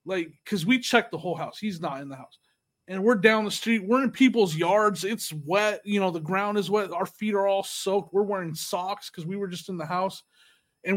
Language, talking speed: English, 245 wpm